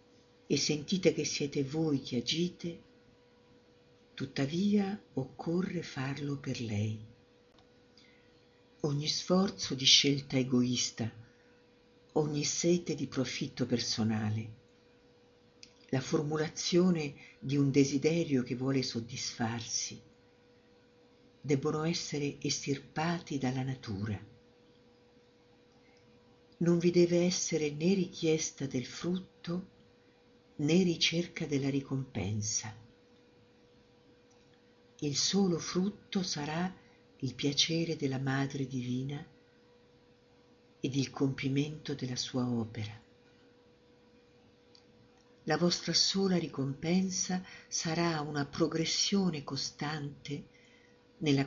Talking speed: 85 wpm